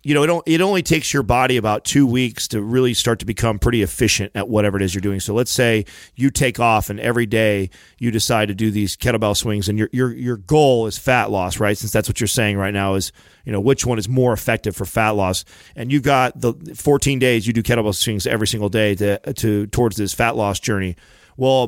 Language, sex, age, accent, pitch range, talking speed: English, male, 40-59, American, 105-130 Hz, 245 wpm